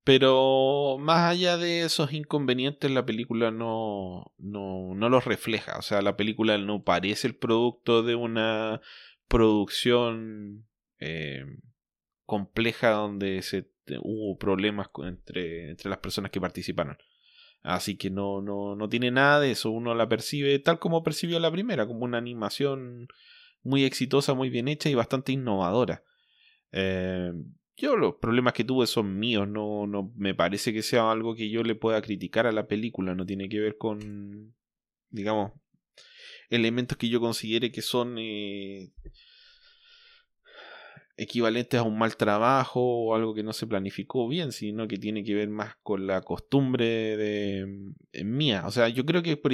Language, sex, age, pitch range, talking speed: English, male, 20-39, 100-135 Hz, 155 wpm